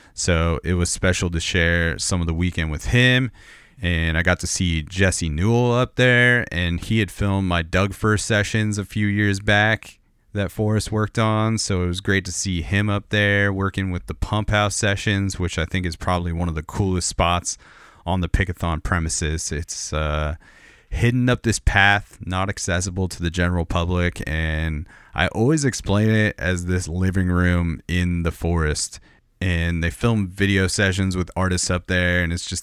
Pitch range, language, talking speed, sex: 85-100 Hz, English, 190 wpm, male